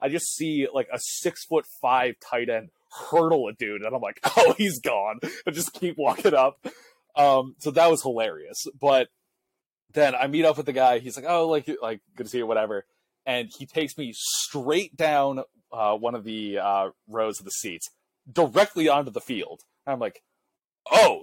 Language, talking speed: English, 190 wpm